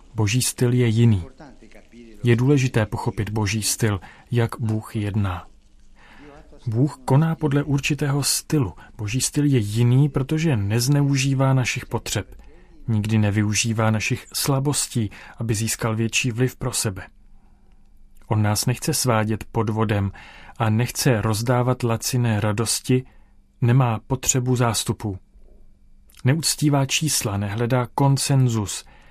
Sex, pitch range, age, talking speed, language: male, 110-130 Hz, 40-59, 110 wpm, Czech